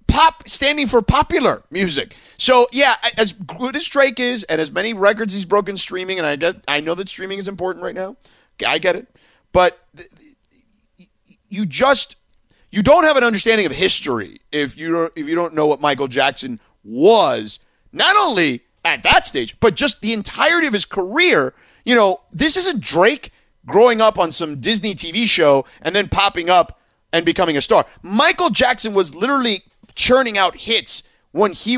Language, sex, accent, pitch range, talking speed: English, male, American, 160-235 Hz, 180 wpm